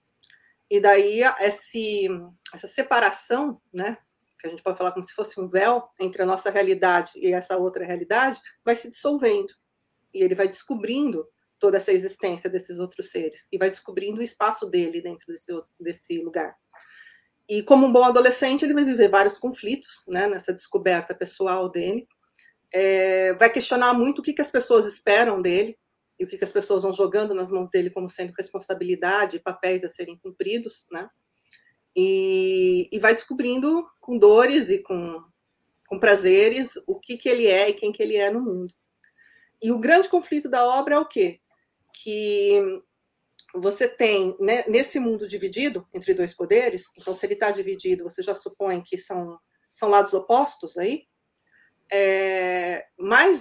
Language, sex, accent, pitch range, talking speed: Portuguese, female, Brazilian, 185-270 Hz, 170 wpm